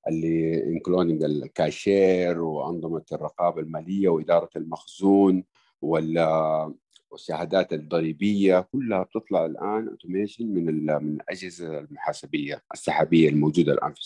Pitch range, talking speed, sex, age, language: 80-105 Hz, 95 wpm, male, 50-69, Arabic